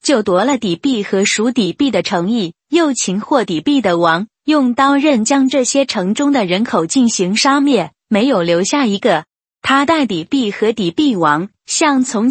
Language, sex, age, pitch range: Chinese, female, 20-39, 200-275 Hz